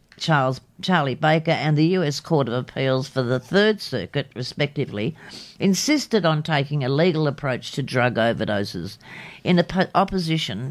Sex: female